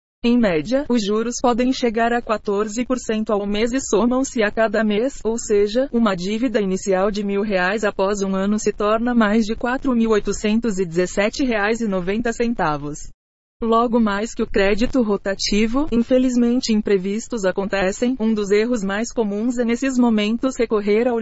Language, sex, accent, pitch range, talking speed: Portuguese, female, Brazilian, 200-240 Hz, 145 wpm